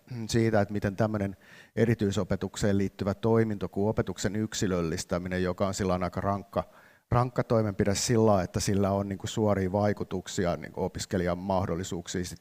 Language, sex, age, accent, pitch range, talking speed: Finnish, male, 50-69, native, 90-110 Hz, 135 wpm